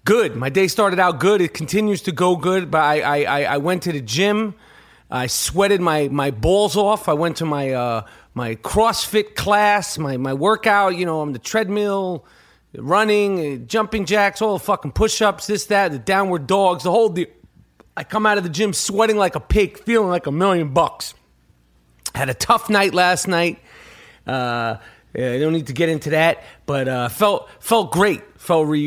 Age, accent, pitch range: 30-49, American, 145-205 Hz